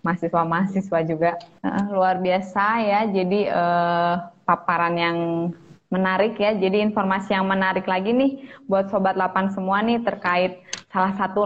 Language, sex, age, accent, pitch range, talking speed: Indonesian, female, 20-39, native, 165-195 Hz, 135 wpm